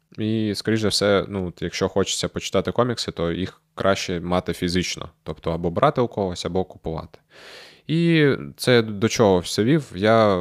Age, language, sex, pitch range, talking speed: 20-39, Ukrainian, male, 85-105 Hz, 155 wpm